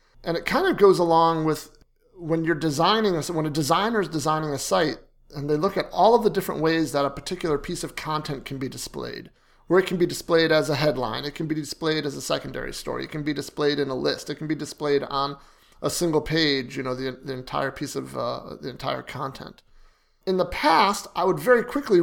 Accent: American